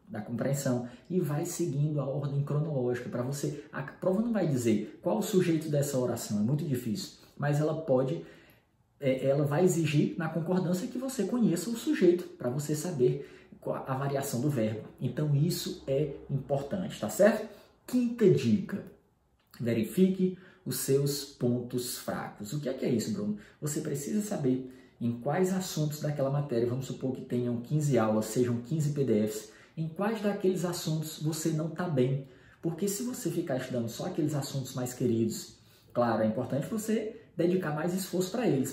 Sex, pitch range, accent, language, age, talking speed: male, 130-195 Hz, Brazilian, Portuguese, 20-39, 165 wpm